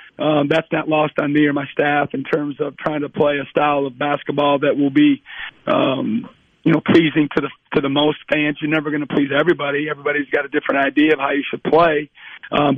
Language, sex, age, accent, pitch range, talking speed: English, male, 40-59, American, 145-155 Hz, 230 wpm